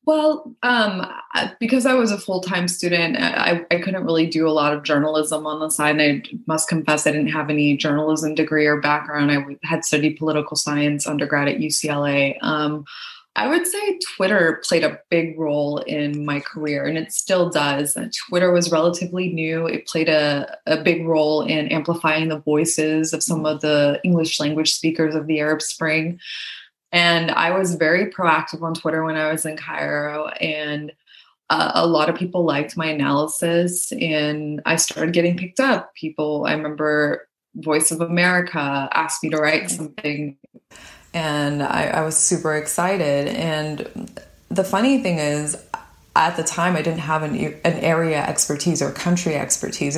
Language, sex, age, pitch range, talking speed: English, female, 20-39, 150-170 Hz, 170 wpm